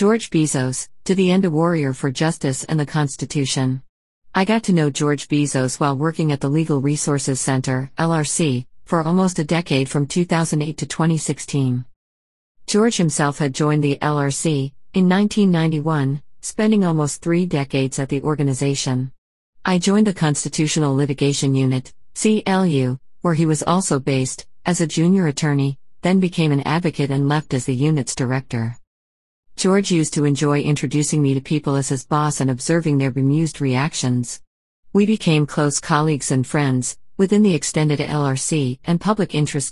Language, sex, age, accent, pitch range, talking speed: English, female, 50-69, American, 135-165 Hz, 155 wpm